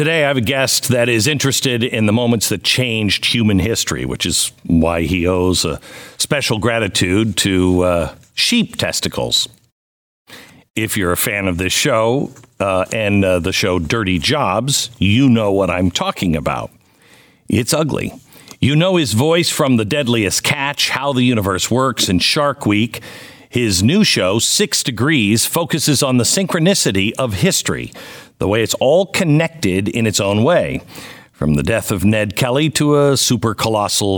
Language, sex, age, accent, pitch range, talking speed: English, male, 50-69, American, 95-135 Hz, 165 wpm